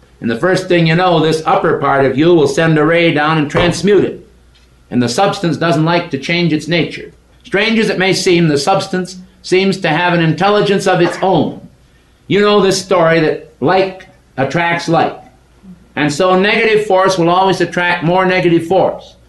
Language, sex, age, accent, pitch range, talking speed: English, male, 50-69, American, 145-190 Hz, 185 wpm